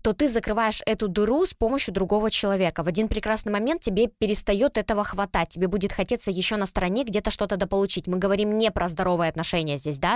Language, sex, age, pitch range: Russian, female, 20-39, 180-220 Hz